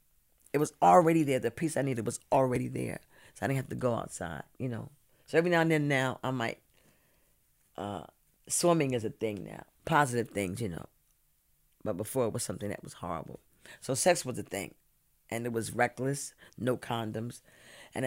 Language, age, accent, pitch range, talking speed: English, 50-69, American, 110-155 Hz, 195 wpm